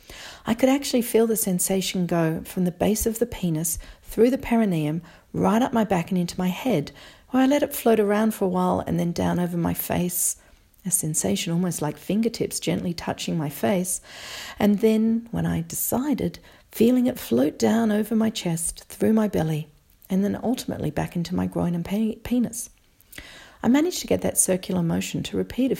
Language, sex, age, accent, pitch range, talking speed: English, female, 40-59, Australian, 160-225 Hz, 190 wpm